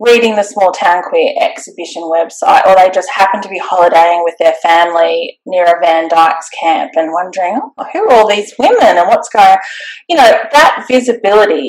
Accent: Australian